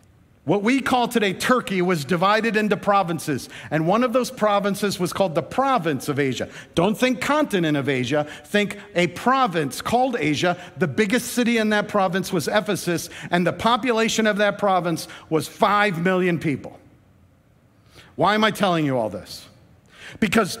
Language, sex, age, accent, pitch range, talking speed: English, male, 50-69, American, 160-245 Hz, 165 wpm